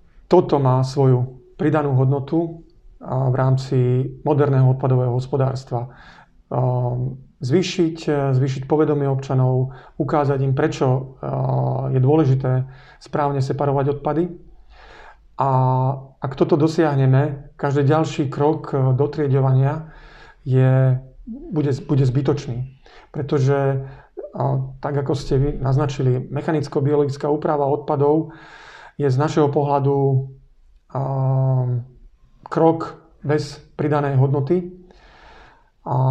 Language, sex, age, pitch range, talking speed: Slovak, male, 40-59, 130-150 Hz, 85 wpm